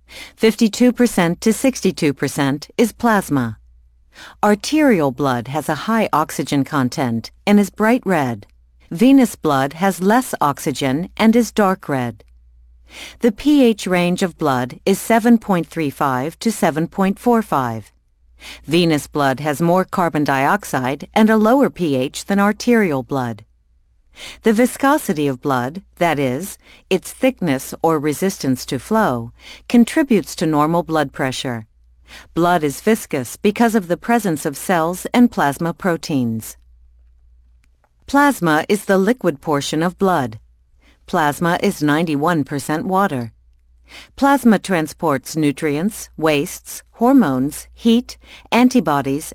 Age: 50-69